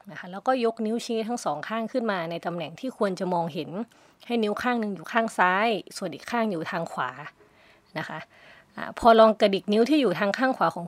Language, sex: Thai, female